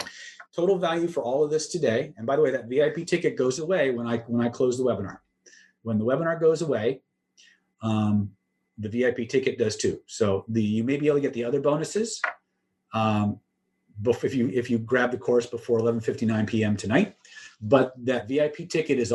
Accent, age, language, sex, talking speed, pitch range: American, 40-59, English, male, 195 wpm, 110-140 Hz